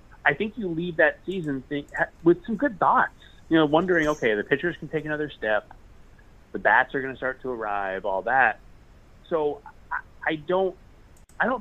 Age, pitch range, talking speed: 30-49, 105-160 Hz, 195 wpm